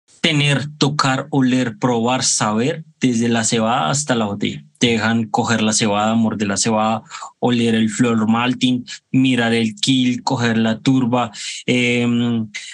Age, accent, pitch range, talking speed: 20-39, Colombian, 120-140 Hz, 140 wpm